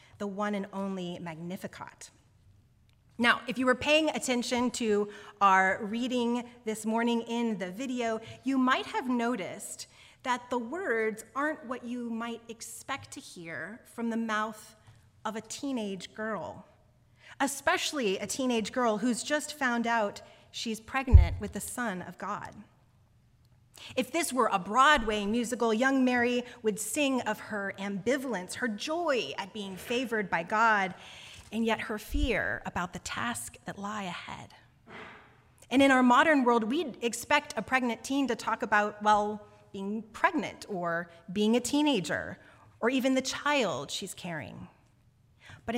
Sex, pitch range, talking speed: female, 195-250 Hz, 145 wpm